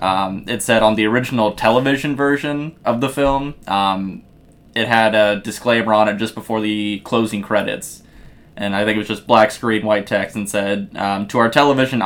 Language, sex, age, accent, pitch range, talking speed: English, male, 20-39, American, 100-115 Hz, 195 wpm